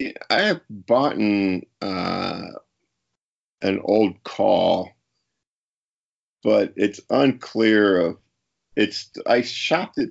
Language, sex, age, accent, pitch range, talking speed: English, male, 40-59, American, 85-105 Hz, 95 wpm